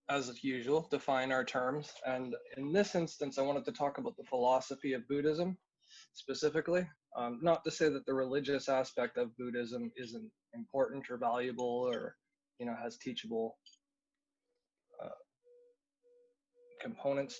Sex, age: male, 20-39